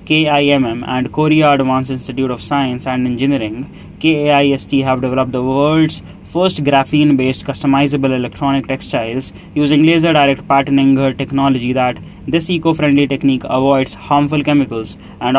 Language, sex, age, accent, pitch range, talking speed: English, male, 20-39, Indian, 130-145 Hz, 120 wpm